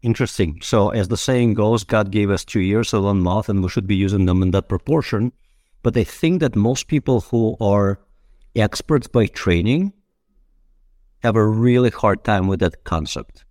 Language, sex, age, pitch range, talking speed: English, male, 50-69, 95-125 Hz, 185 wpm